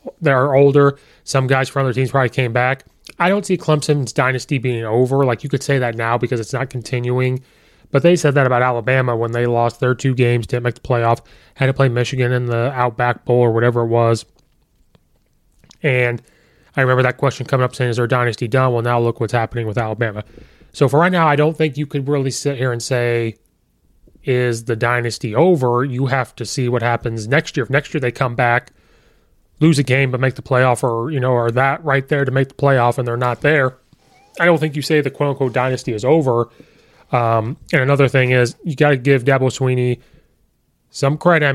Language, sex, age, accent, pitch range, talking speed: English, male, 30-49, American, 120-140 Hz, 220 wpm